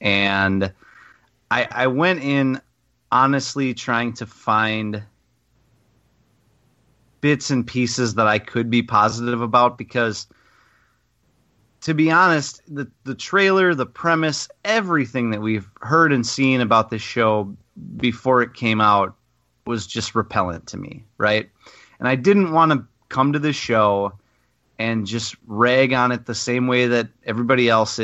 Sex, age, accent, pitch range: male, 30-49, American, 110-135 Hz